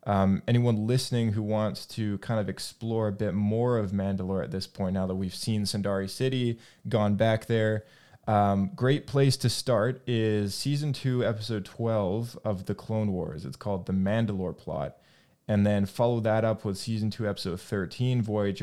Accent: American